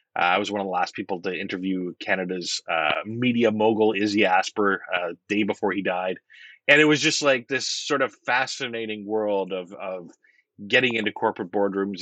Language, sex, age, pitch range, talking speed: English, male, 30-49, 95-110 Hz, 180 wpm